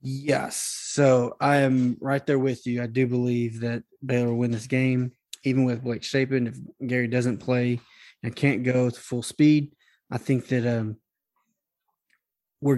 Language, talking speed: English, 170 wpm